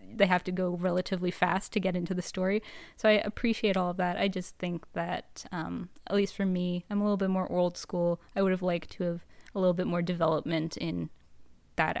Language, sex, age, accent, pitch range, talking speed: English, female, 10-29, American, 180-210 Hz, 230 wpm